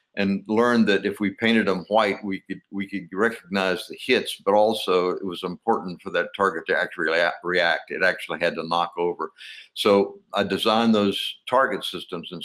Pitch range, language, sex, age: 90-105 Hz, English, male, 60-79